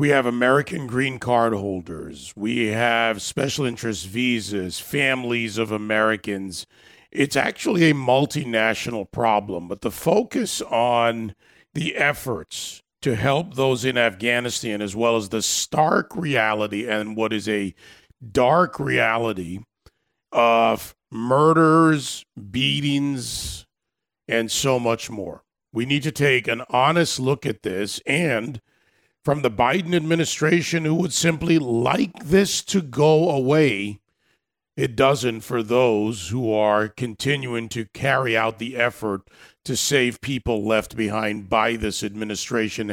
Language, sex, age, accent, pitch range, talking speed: English, male, 40-59, American, 105-130 Hz, 125 wpm